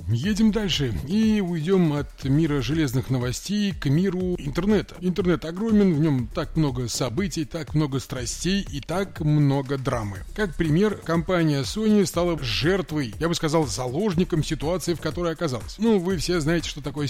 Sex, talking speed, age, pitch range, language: male, 160 wpm, 30-49, 135-185 Hz, Russian